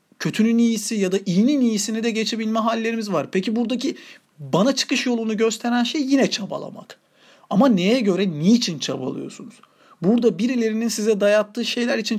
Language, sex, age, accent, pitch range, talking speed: Turkish, male, 40-59, native, 180-230 Hz, 150 wpm